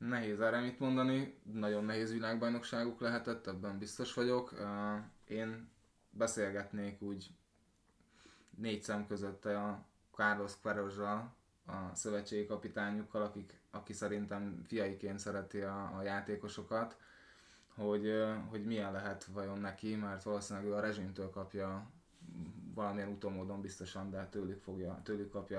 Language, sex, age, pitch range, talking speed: Hungarian, male, 20-39, 100-110 Hz, 120 wpm